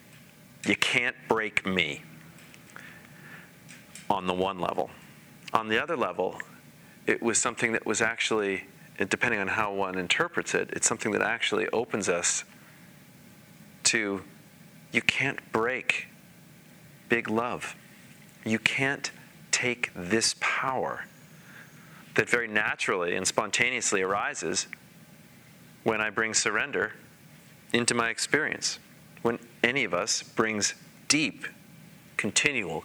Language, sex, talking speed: English, male, 110 wpm